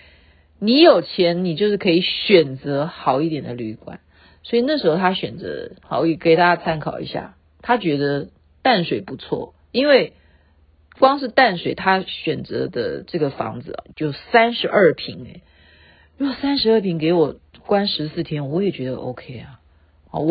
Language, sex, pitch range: Chinese, female, 150-240 Hz